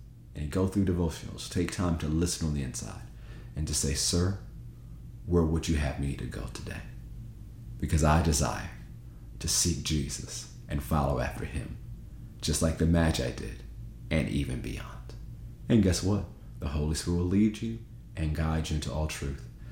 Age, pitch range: 40-59, 75-100 Hz